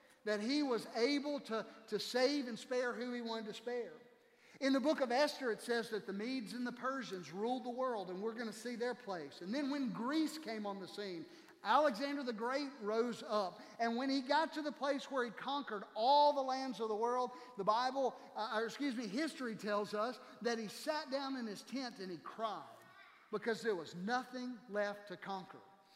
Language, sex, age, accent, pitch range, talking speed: English, male, 50-69, American, 215-265 Hz, 215 wpm